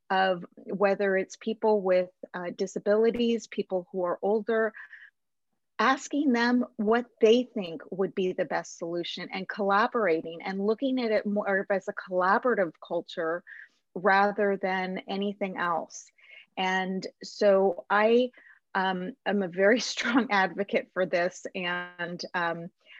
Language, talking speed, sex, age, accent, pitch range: English, 130 wpm, female, 30-49, American, 185-215 Hz